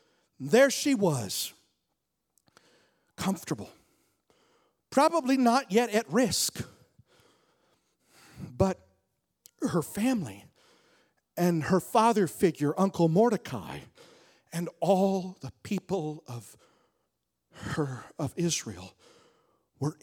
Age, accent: 40-59, American